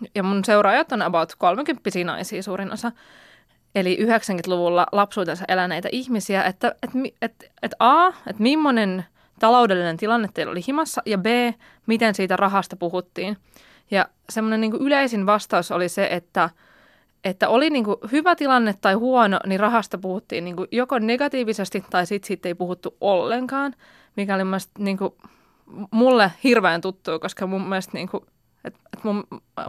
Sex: female